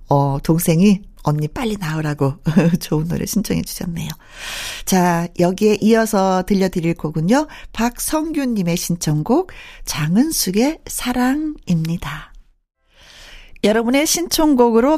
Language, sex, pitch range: Korean, female, 180-270 Hz